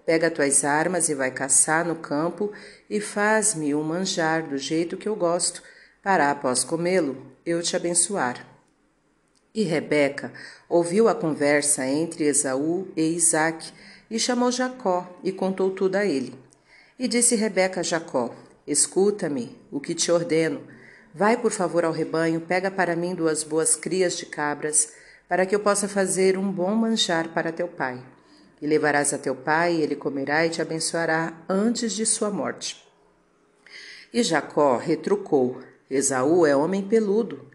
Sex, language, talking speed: female, Portuguese, 150 wpm